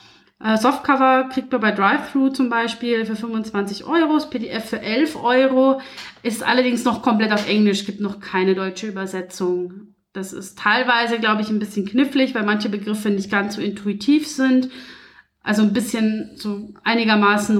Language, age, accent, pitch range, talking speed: German, 30-49, German, 200-245 Hz, 155 wpm